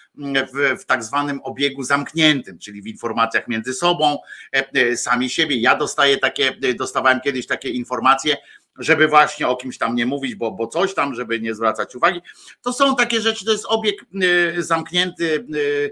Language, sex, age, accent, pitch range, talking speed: Polish, male, 50-69, native, 115-150 Hz, 160 wpm